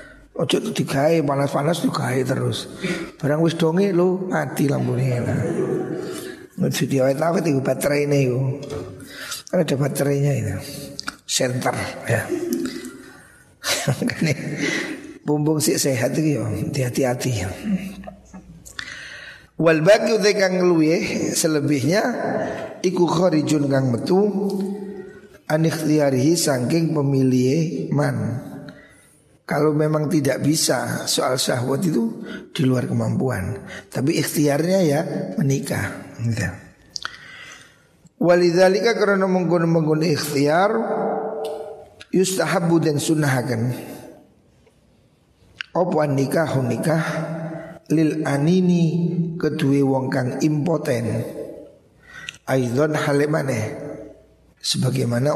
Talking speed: 70 wpm